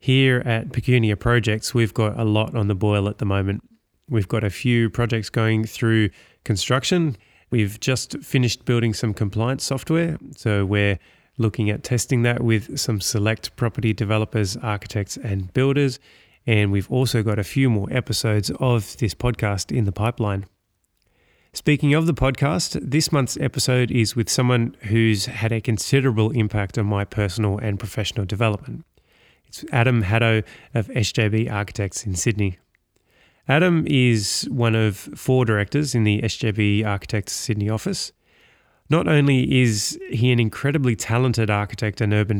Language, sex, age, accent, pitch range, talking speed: English, male, 30-49, Australian, 105-125 Hz, 150 wpm